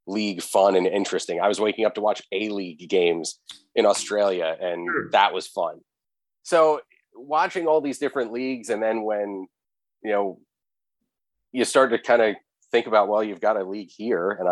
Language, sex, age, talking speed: English, male, 30-49, 180 wpm